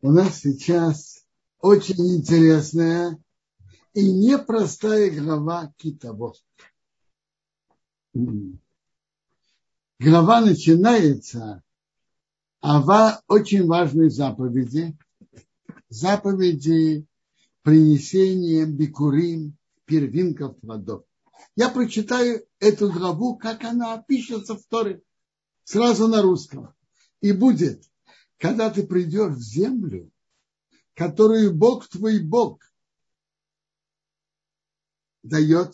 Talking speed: 75 wpm